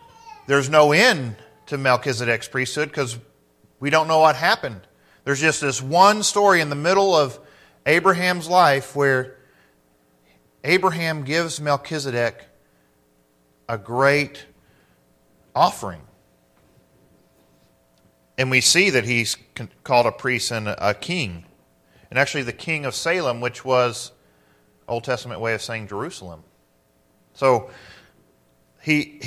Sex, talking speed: male, 115 wpm